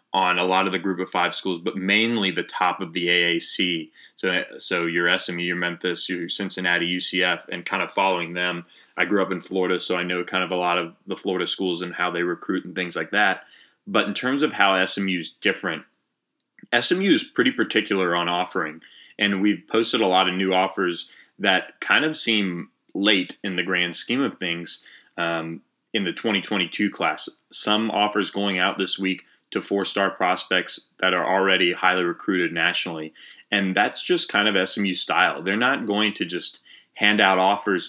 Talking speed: 195 wpm